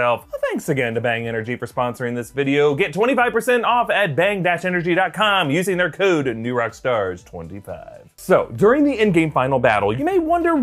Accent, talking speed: American, 160 wpm